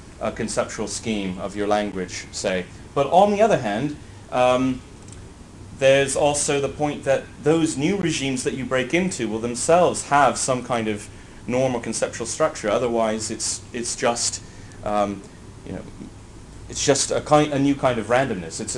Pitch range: 105-125 Hz